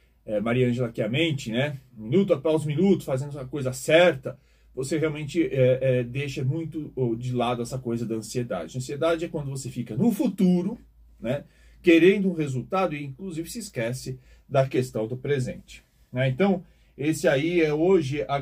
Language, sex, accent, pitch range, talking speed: Portuguese, male, Brazilian, 125-165 Hz, 160 wpm